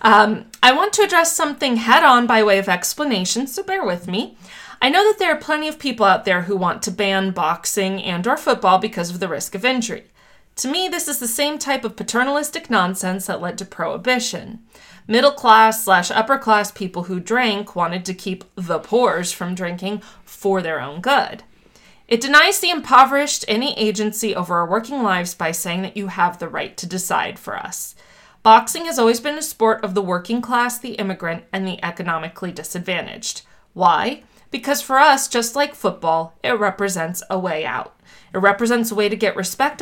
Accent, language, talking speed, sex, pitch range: American, English, 190 wpm, female, 185-245 Hz